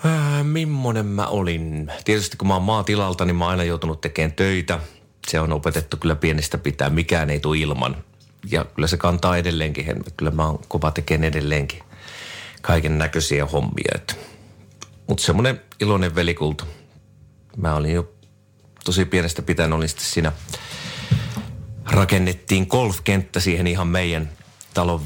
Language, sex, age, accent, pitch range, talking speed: Finnish, male, 30-49, native, 80-100 Hz, 145 wpm